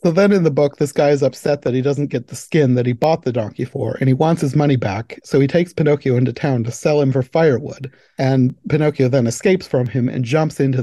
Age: 40-59